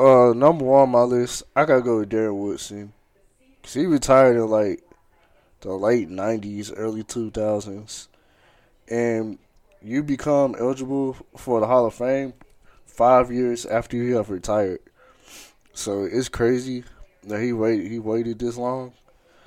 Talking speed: 145 wpm